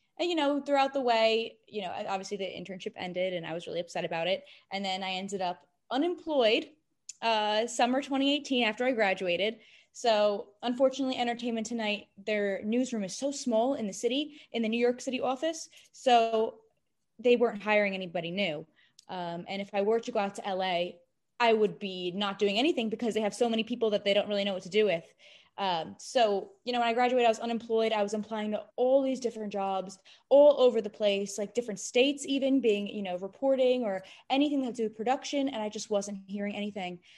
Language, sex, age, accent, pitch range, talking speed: English, female, 10-29, American, 205-255 Hz, 205 wpm